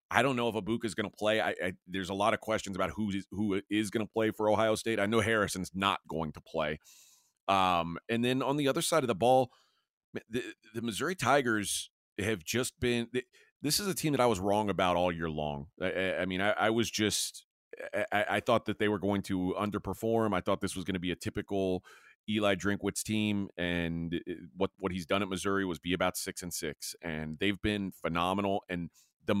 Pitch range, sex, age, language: 95-120 Hz, male, 30-49, English